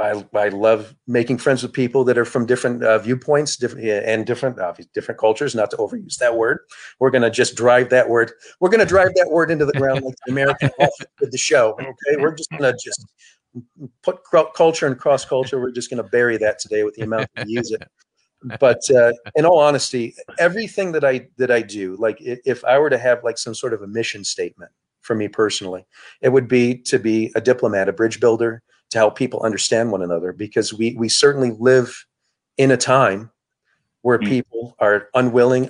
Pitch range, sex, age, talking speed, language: 110-135 Hz, male, 40-59, 200 wpm, English